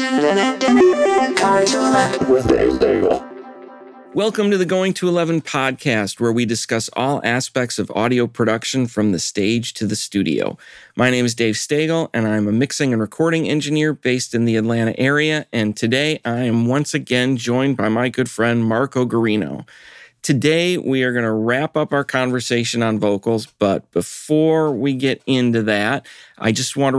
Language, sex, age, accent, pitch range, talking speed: English, male, 40-59, American, 115-140 Hz, 160 wpm